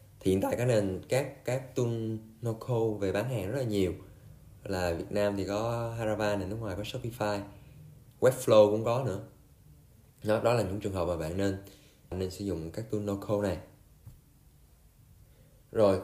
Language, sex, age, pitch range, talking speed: Vietnamese, male, 20-39, 95-115 Hz, 175 wpm